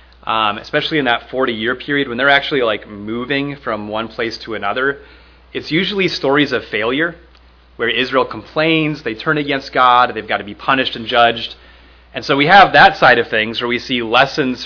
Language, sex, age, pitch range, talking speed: English, male, 30-49, 105-160 Hz, 190 wpm